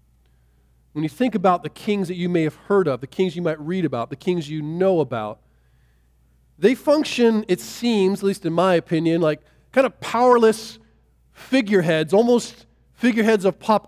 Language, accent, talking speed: English, American, 175 wpm